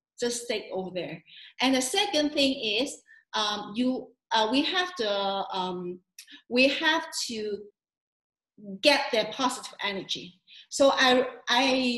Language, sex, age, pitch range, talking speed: English, female, 40-59, 210-265 Hz, 130 wpm